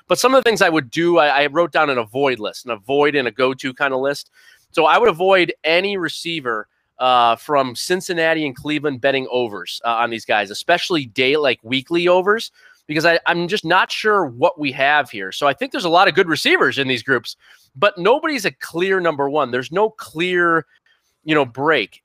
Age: 30-49